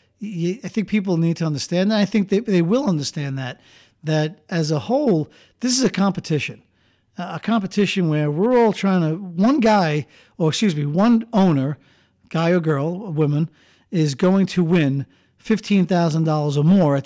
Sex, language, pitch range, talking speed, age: male, English, 150-190 Hz, 185 wpm, 50-69